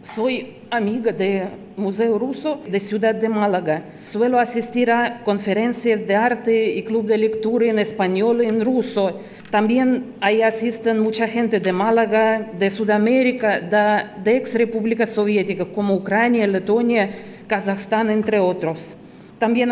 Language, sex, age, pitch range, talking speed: Spanish, female, 40-59, 210-240 Hz, 135 wpm